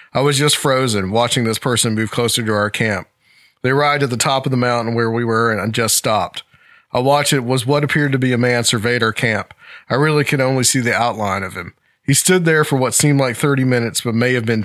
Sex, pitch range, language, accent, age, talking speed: male, 115-140 Hz, English, American, 40-59, 250 wpm